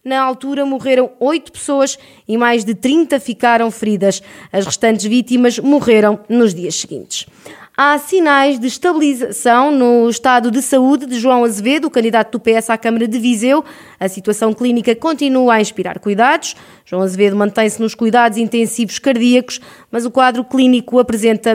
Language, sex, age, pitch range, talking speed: Portuguese, female, 20-39, 225-275 Hz, 155 wpm